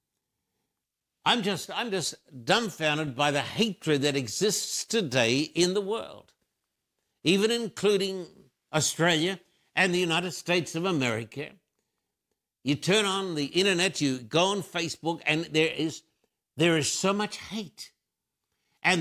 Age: 60-79